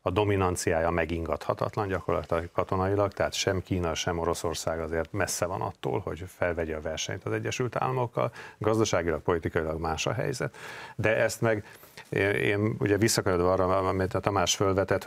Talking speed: 145 wpm